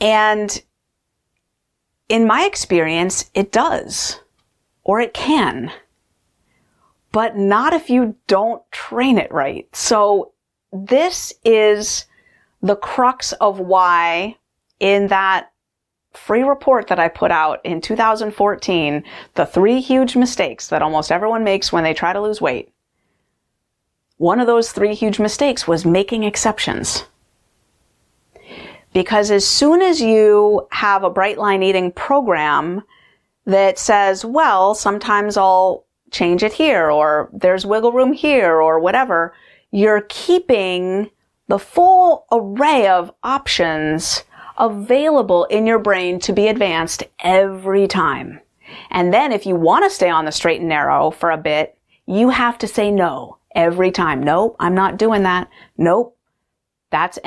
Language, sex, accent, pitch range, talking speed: English, female, American, 180-230 Hz, 135 wpm